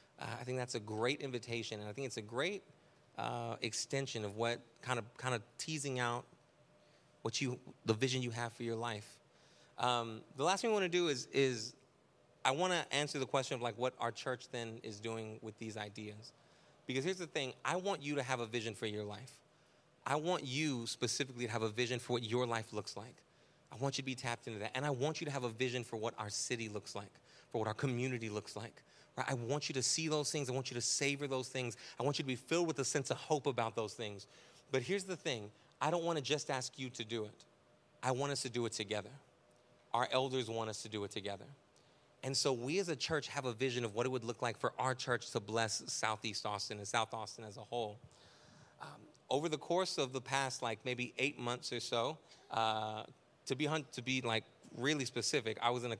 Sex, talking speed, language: male, 240 wpm, English